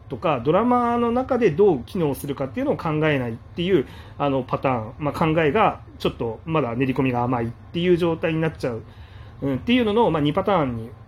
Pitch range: 110-170 Hz